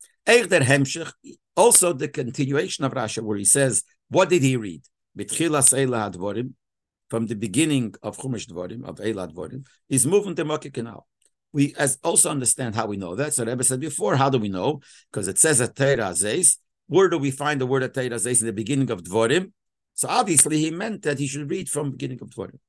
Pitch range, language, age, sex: 120-155 Hz, English, 50-69, male